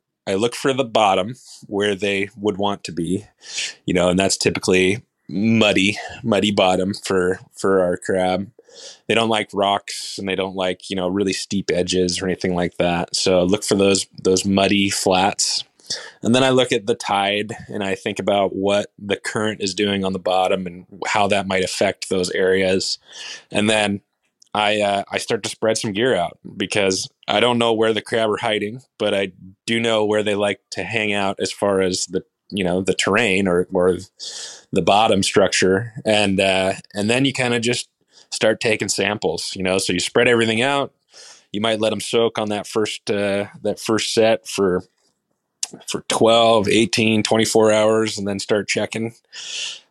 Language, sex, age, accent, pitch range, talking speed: English, male, 20-39, American, 95-110 Hz, 190 wpm